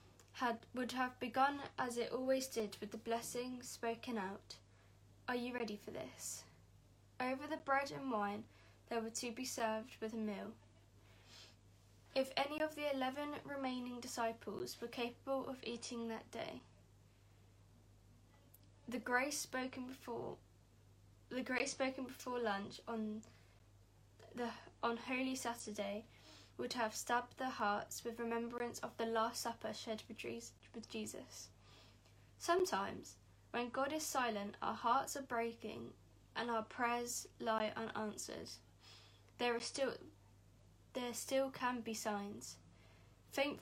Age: 10-29